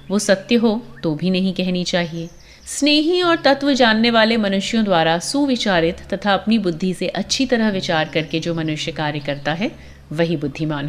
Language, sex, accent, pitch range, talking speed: Hindi, female, native, 170-270 Hz, 170 wpm